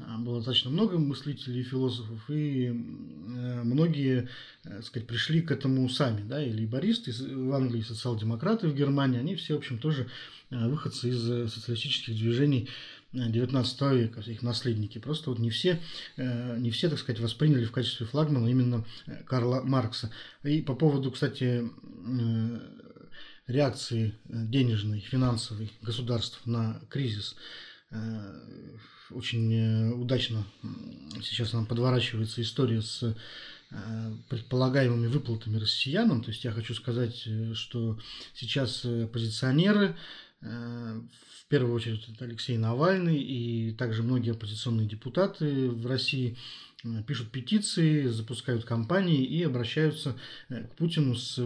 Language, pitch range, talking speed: Russian, 115-135 Hz, 115 wpm